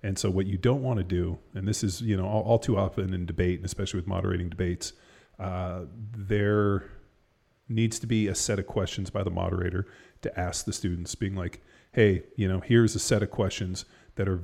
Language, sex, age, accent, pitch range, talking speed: English, male, 30-49, American, 90-105 Hz, 215 wpm